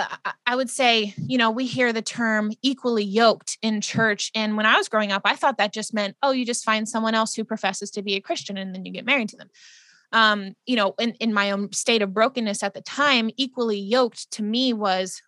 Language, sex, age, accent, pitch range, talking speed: English, female, 20-39, American, 200-235 Hz, 240 wpm